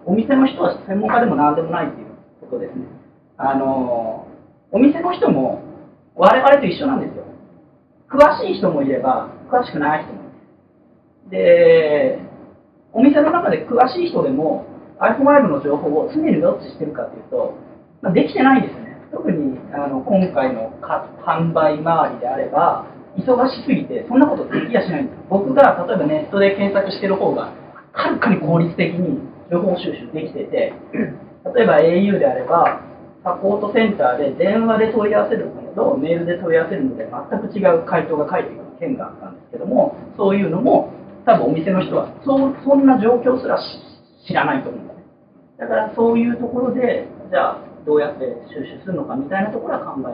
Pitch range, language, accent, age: 180-275 Hz, Japanese, native, 40-59